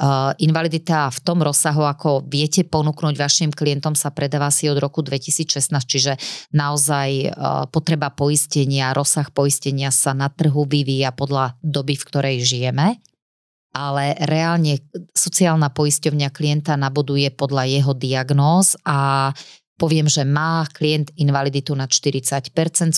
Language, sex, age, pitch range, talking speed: Slovak, female, 30-49, 135-155 Hz, 125 wpm